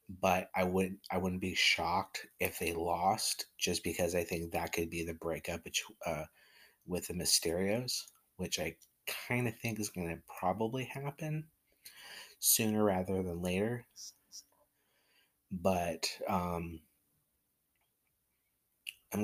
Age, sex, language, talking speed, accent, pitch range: 30-49, male, English, 130 wpm, American, 85-100 Hz